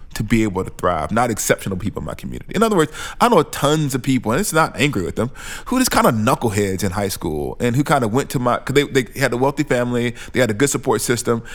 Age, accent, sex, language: 20-39, American, male, English